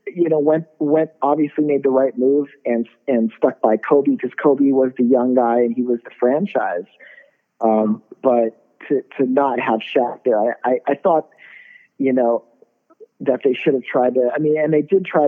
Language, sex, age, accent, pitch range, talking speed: English, male, 40-59, American, 110-135 Hz, 200 wpm